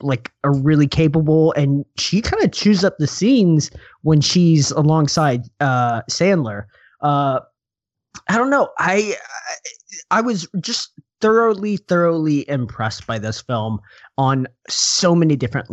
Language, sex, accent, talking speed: English, male, American, 135 wpm